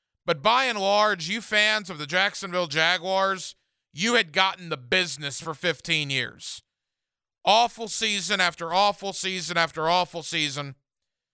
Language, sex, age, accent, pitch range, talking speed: English, male, 40-59, American, 165-205 Hz, 140 wpm